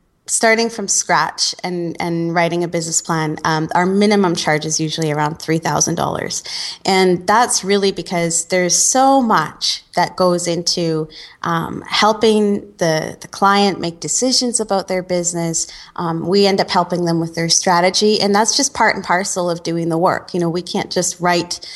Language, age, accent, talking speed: English, 20-39, American, 170 wpm